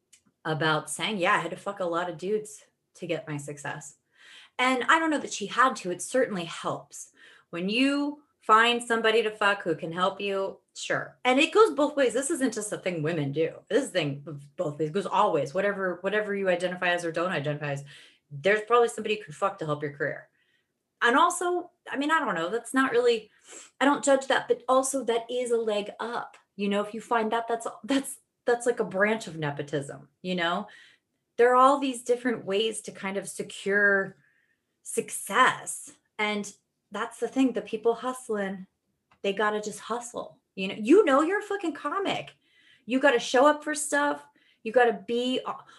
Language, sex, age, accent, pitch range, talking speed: English, female, 30-49, American, 180-255 Hz, 200 wpm